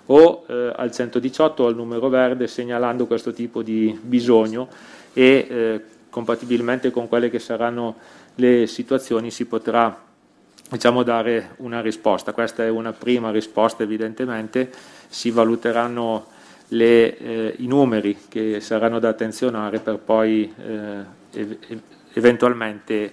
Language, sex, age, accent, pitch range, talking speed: Italian, male, 30-49, native, 110-125 Hz, 120 wpm